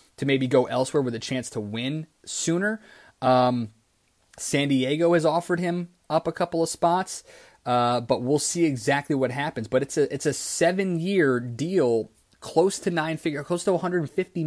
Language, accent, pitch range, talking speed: English, American, 125-155 Hz, 175 wpm